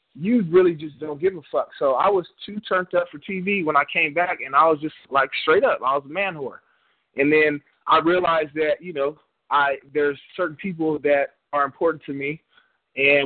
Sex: male